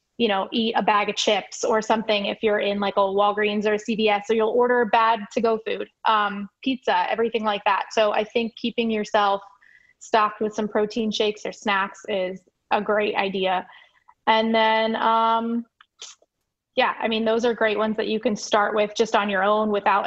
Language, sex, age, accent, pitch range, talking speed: English, female, 20-39, American, 205-230 Hz, 195 wpm